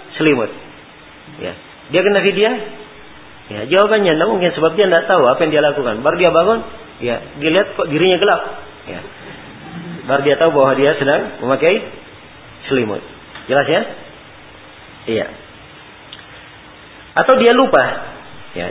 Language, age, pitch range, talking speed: Malay, 40-59, 140-210 Hz, 140 wpm